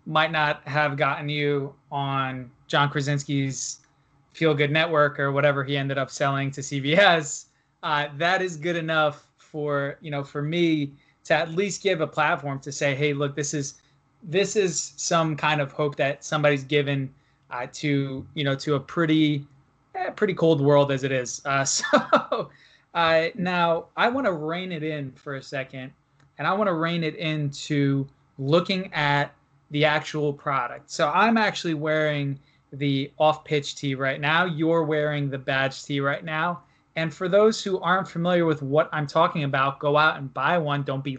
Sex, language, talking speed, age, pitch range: male, English, 180 wpm, 20-39, 140-160 Hz